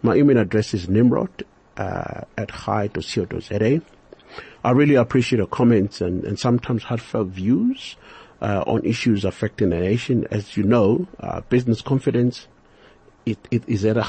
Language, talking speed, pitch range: English, 160 wpm, 100-120 Hz